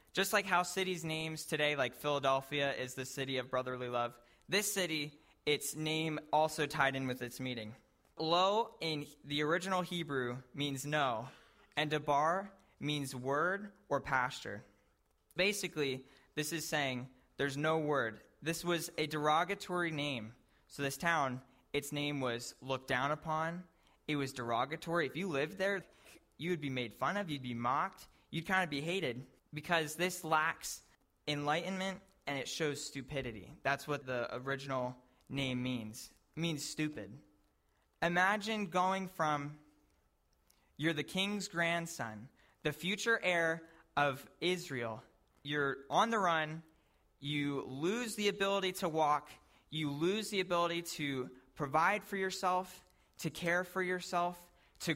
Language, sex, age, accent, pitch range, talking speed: English, male, 20-39, American, 135-175 Hz, 140 wpm